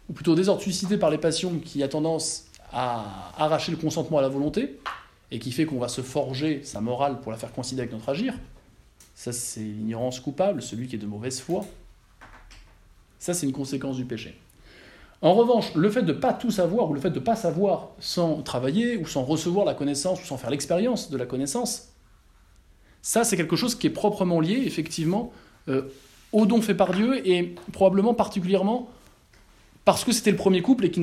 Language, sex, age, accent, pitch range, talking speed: French, male, 20-39, French, 135-195 Hz, 205 wpm